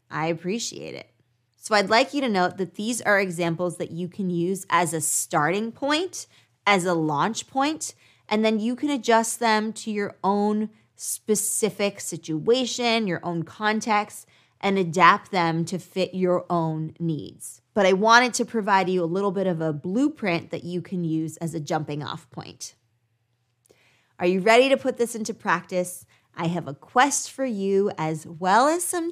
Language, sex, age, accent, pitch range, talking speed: English, female, 20-39, American, 165-220 Hz, 175 wpm